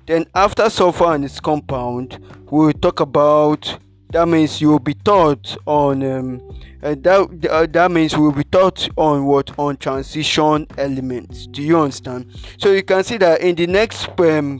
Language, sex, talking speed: English, male, 180 wpm